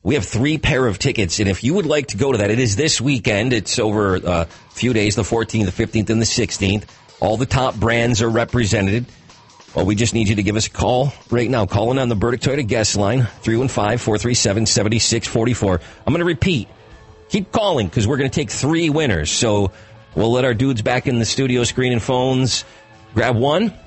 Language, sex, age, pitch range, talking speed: English, male, 40-59, 105-130 Hz, 210 wpm